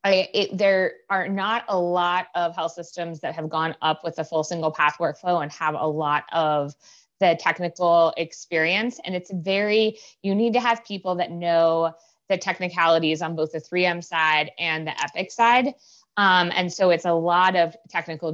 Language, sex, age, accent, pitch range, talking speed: English, female, 20-39, American, 160-190 Hz, 180 wpm